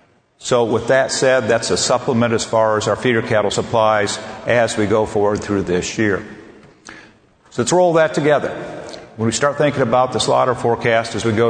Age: 50-69